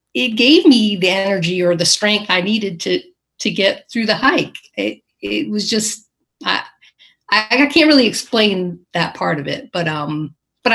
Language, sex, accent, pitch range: English, female, American, 165-225 Hz